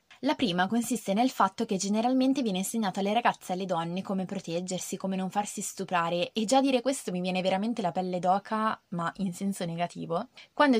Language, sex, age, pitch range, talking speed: Italian, female, 20-39, 180-230 Hz, 195 wpm